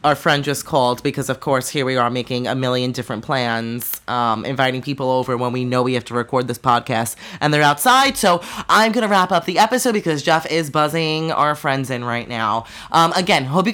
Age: 30-49